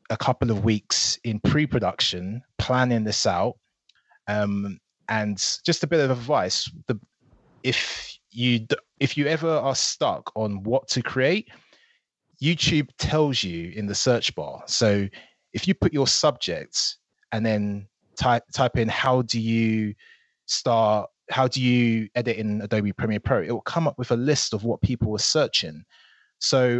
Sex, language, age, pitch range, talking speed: male, English, 20-39, 100-125 Hz, 160 wpm